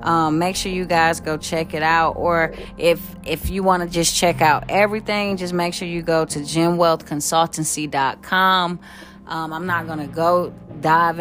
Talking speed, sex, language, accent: 170 wpm, female, English, American